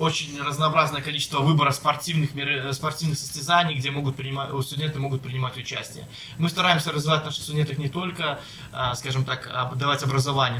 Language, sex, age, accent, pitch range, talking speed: Russian, male, 20-39, native, 130-165 Hz, 140 wpm